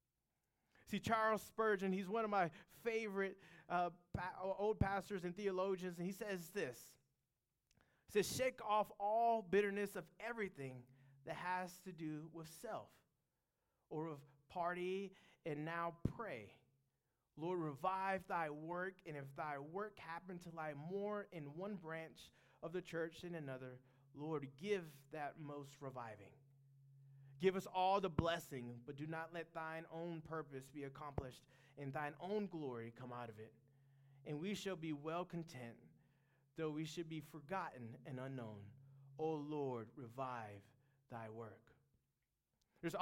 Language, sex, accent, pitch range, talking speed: English, male, American, 135-190 Hz, 145 wpm